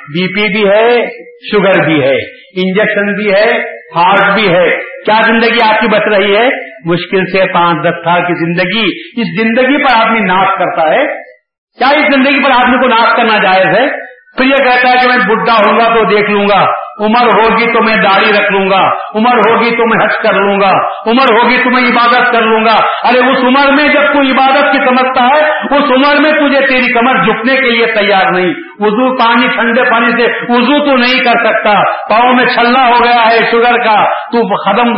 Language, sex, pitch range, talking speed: Urdu, male, 215-265 Hz, 195 wpm